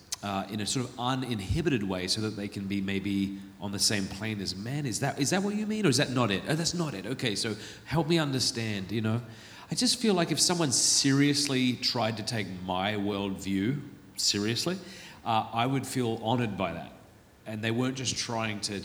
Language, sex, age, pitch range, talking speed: English, male, 40-59, 100-145 Hz, 215 wpm